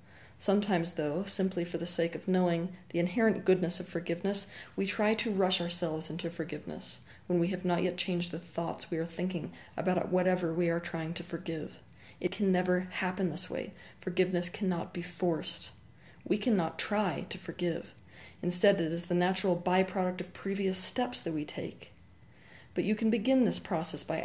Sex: female